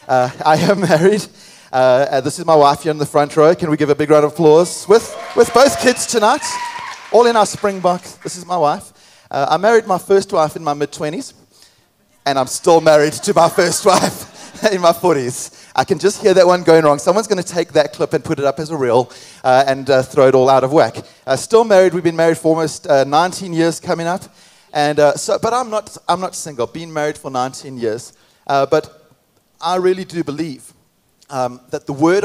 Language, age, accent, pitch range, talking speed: English, 30-49, Australian, 145-180 Hz, 240 wpm